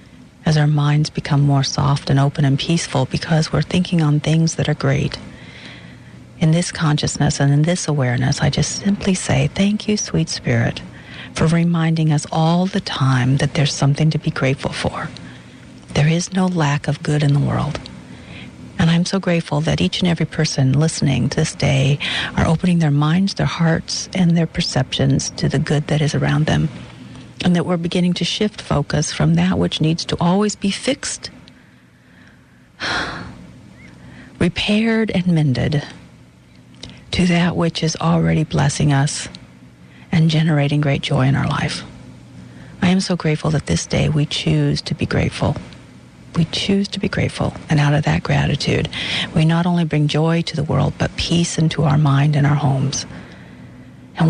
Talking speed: 170 wpm